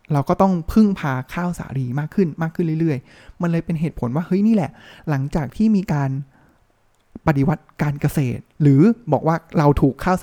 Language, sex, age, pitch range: Thai, male, 20-39, 140-180 Hz